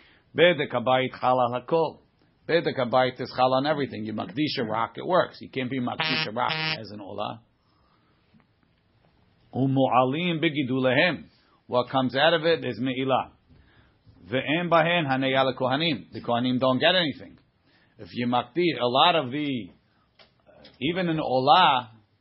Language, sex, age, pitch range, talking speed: English, male, 50-69, 125-140 Hz, 145 wpm